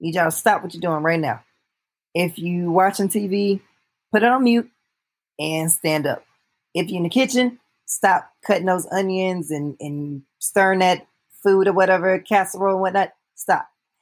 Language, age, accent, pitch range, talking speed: English, 20-39, American, 175-205 Hz, 165 wpm